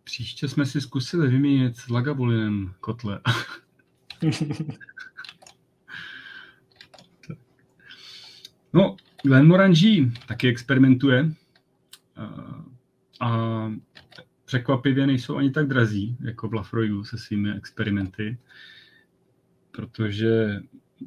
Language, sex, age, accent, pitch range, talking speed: Czech, male, 30-49, native, 105-130 Hz, 70 wpm